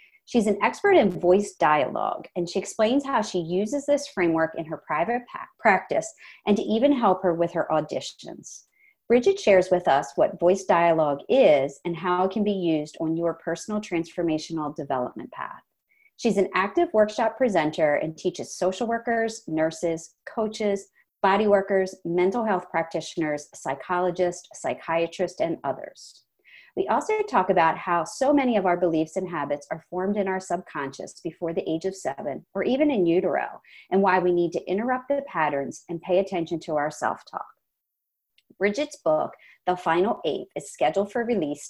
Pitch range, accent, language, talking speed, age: 165-215 Hz, American, English, 165 wpm, 40-59